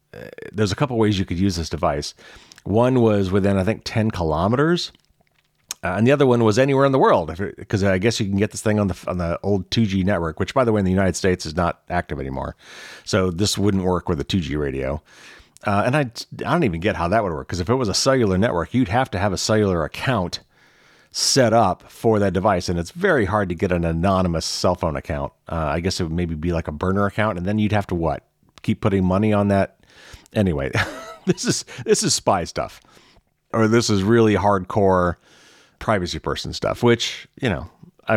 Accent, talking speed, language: American, 225 wpm, English